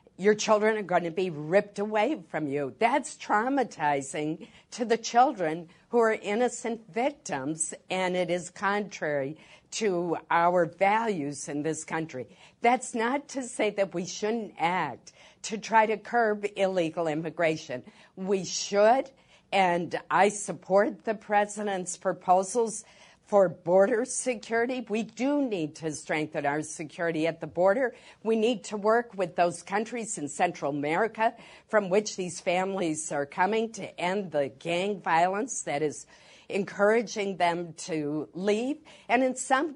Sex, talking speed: female, 140 wpm